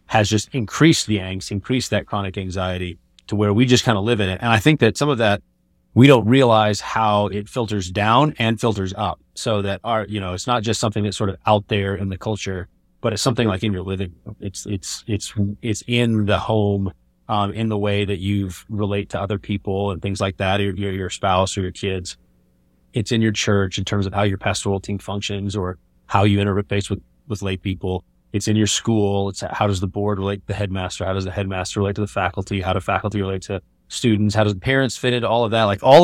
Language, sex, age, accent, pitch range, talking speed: English, male, 30-49, American, 95-115 Hz, 240 wpm